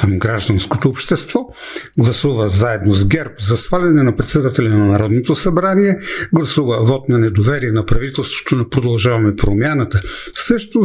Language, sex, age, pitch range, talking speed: Bulgarian, male, 60-79, 115-170 Hz, 125 wpm